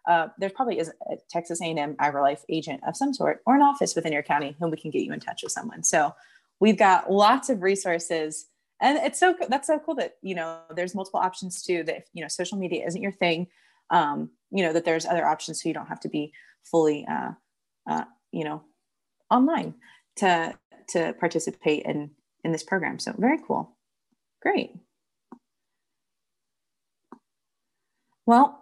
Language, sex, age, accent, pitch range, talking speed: English, female, 30-49, American, 165-225 Hz, 180 wpm